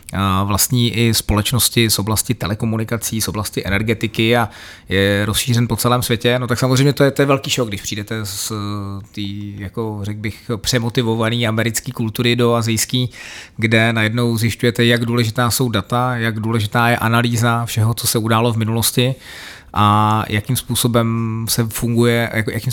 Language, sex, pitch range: Czech, male, 115-125 Hz